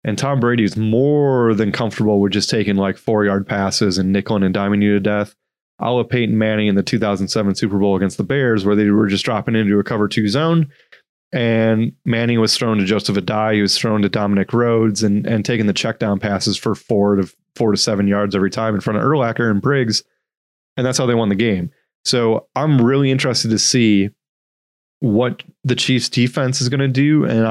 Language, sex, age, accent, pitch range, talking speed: English, male, 20-39, American, 105-120 Hz, 220 wpm